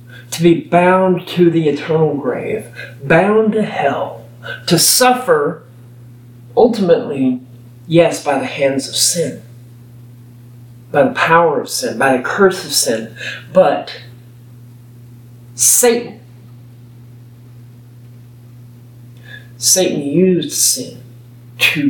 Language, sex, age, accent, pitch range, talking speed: English, male, 40-59, American, 120-180 Hz, 95 wpm